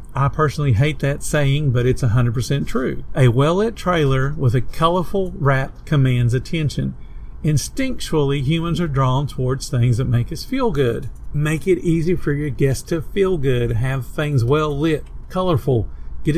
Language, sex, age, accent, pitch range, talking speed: English, male, 50-69, American, 125-155 Hz, 160 wpm